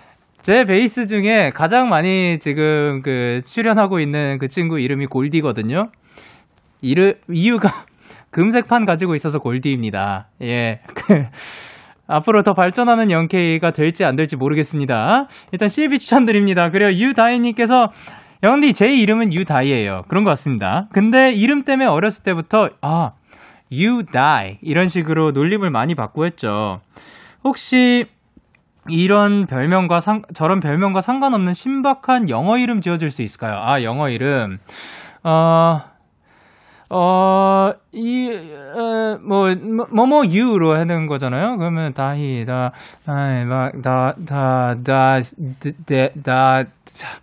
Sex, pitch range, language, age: male, 140-215 Hz, Korean, 20-39